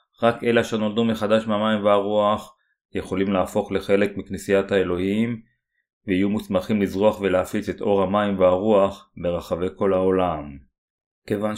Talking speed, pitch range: 120 wpm, 95-105 Hz